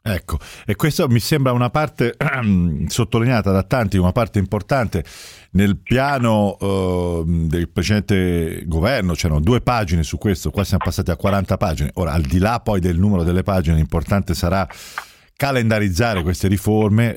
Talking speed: 155 wpm